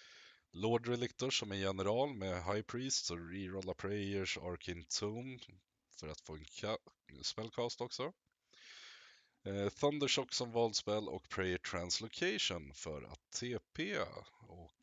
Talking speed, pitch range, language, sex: 130 wpm, 95-120 Hz, Swedish, male